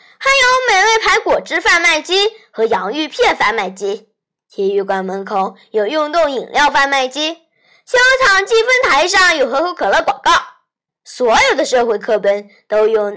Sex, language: female, Chinese